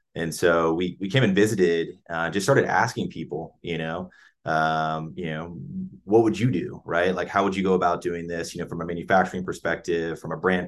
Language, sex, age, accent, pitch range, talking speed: English, male, 30-49, American, 80-90 Hz, 220 wpm